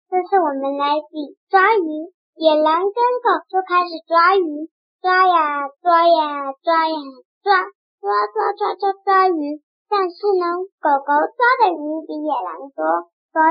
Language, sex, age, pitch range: Chinese, male, 10-29, 290-380 Hz